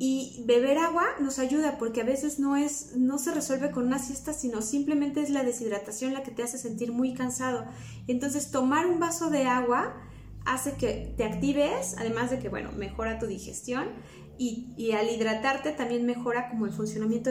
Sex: female